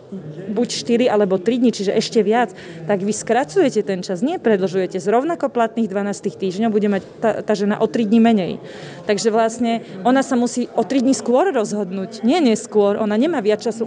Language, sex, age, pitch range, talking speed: Slovak, female, 30-49, 195-220 Hz, 190 wpm